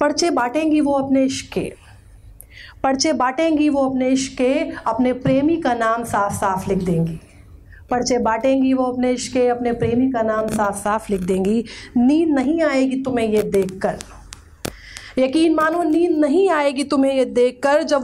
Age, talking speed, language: 30-49, 155 wpm, Hindi